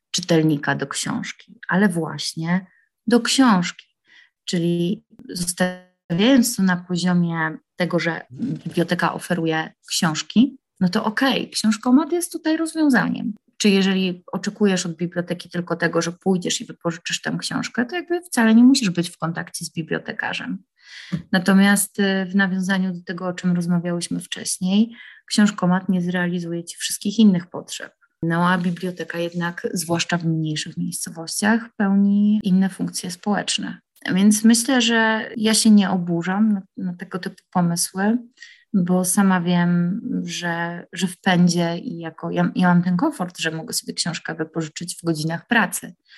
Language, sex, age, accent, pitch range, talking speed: Polish, female, 20-39, native, 170-215 Hz, 145 wpm